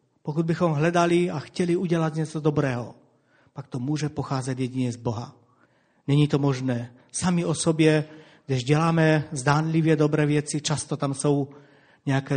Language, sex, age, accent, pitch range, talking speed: Czech, male, 40-59, native, 135-160 Hz, 145 wpm